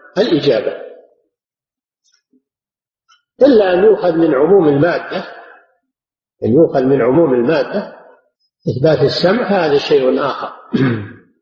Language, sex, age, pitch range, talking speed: Arabic, male, 50-69, 160-220 Hz, 90 wpm